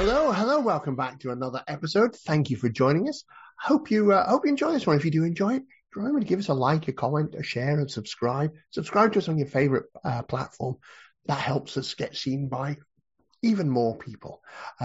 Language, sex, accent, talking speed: English, male, British, 230 wpm